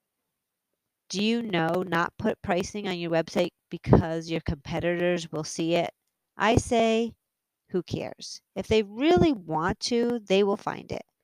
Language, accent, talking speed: English, American, 150 wpm